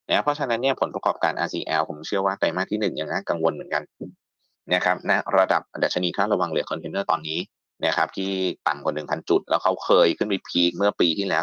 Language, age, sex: Thai, 30-49, male